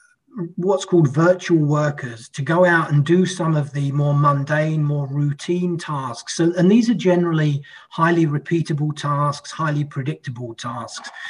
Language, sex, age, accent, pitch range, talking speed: English, male, 30-49, British, 135-165 Hz, 150 wpm